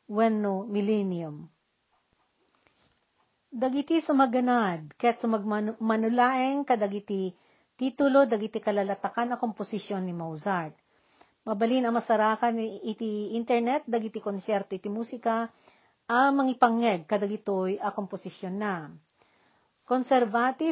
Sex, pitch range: female, 210-255 Hz